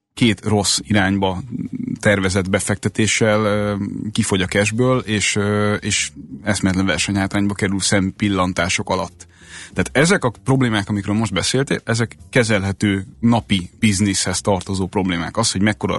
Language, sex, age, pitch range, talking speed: Hungarian, male, 30-49, 95-110 Hz, 115 wpm